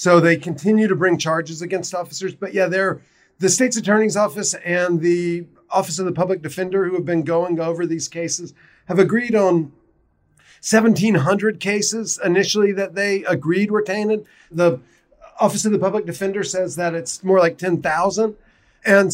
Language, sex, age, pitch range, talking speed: English, male, 40-59, 170-195 Hz, 165 wpm